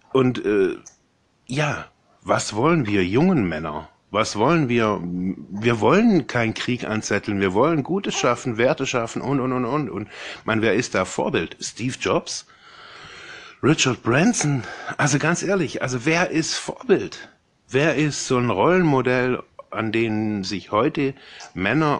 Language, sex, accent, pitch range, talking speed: German, male, German, 115-160 Hz, 145 wpm